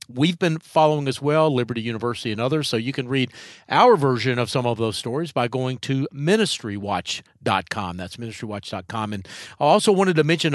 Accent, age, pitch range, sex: American, 50-69, 115-160 Hz, male